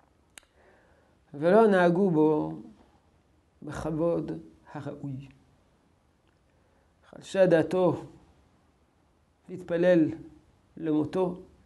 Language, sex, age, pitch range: Hebrew, male, 50-69, 140-195 Hz